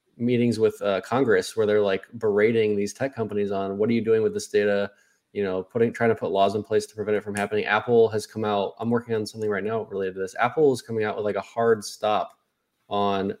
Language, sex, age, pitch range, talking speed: English, male, 20-39, 100-115 Hz, 250 wpm